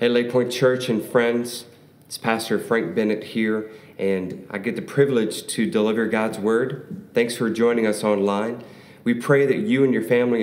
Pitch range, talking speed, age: 105-125 Hz, 185 wpm, 40-59